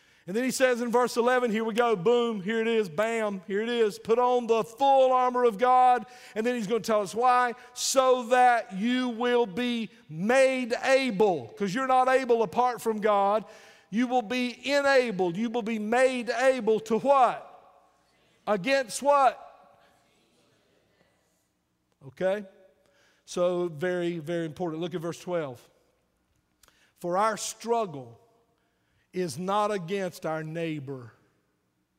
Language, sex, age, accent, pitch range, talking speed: English, male, 50-69, American, 165-235 Hz, 145 wpm